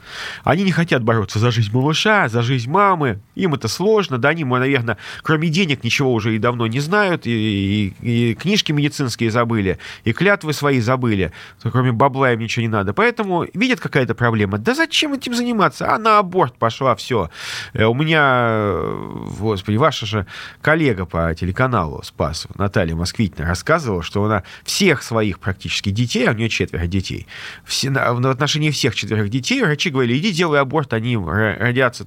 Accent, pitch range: native, 110-160 Hz